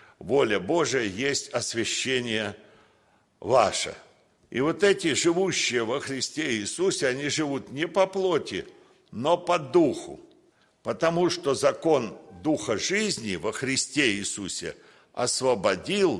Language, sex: Russian, male